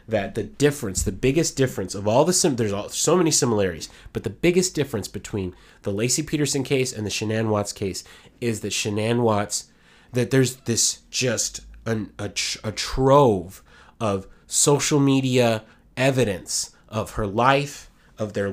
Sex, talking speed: male, 160 wpm